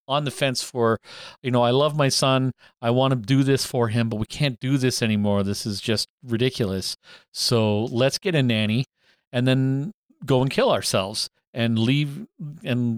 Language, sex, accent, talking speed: English, male, American, 190 wpm